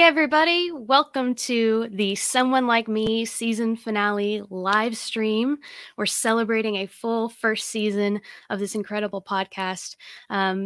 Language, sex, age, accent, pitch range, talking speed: English, female, 20-39, American, 190-230 Hz, 125 wpm